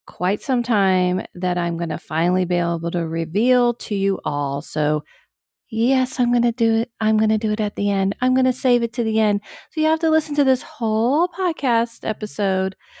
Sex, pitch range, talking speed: female, 180-240 Hz, 220 wpm